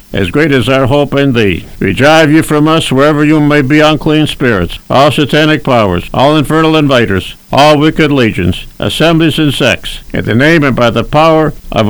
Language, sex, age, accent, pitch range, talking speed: English, male, 60-79, American, 125-155 Hz, 185 wpm